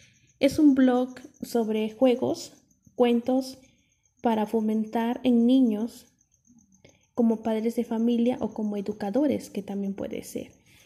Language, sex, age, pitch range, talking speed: Spanish, female, 30-49, 205-250 Hz, 115 wpm